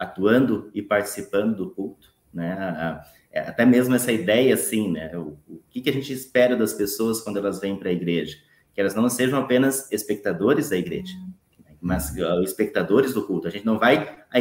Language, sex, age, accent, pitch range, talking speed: Portuguese, male, 30-49, Brazilian, 100-125 Hz, 185 wpm